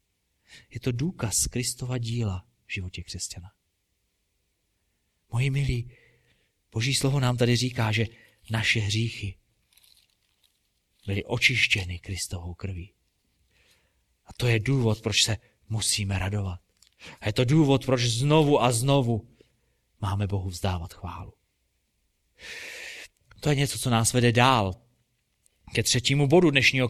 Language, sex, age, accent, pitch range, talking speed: Czech, male, 30-49, native, 95-135 Hz, 120 wpm